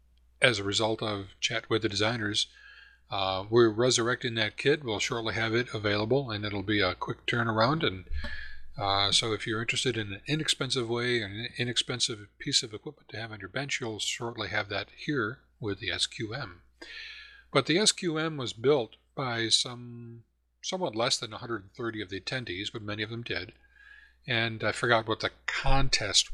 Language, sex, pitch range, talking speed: English, male, 100-120 Hz, 175 wpm